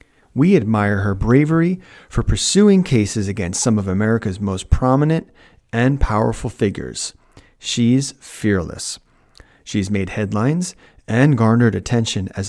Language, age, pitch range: Japanese, 30-49, 105-130 Hz